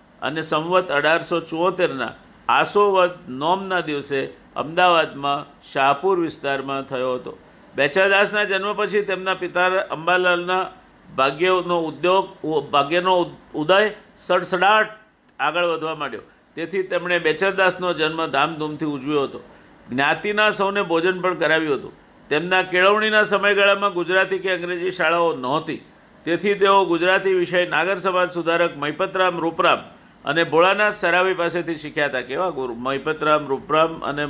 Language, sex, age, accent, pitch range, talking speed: Gujarati, male, 50-69, native, 155-195 Hz, 100 wpm